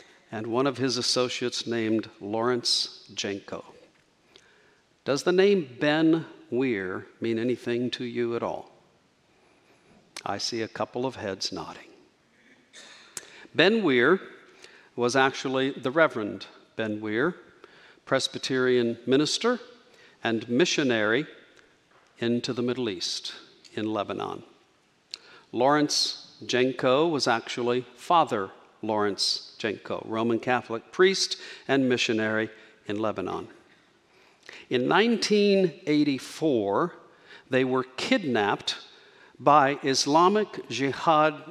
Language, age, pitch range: English, 50-69, 115-150 Hz